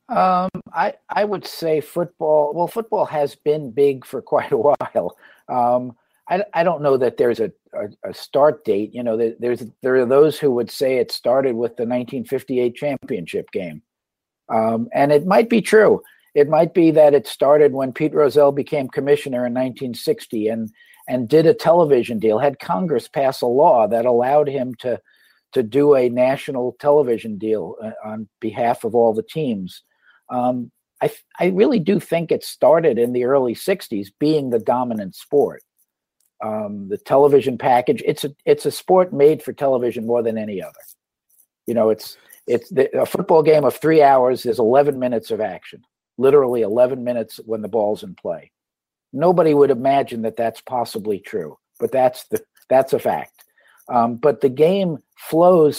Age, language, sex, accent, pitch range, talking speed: 50-69, English, male, American, 120-160 Hz, 180 wpm